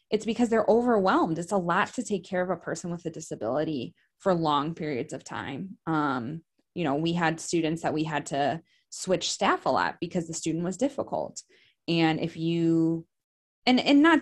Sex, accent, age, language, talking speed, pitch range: female, American, 20-39, English, 195 wpm, 160-200 Hz